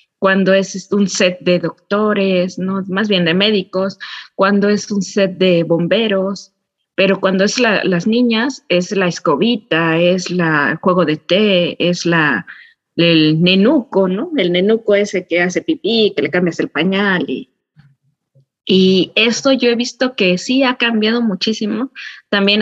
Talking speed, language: 160 wpm, Spanish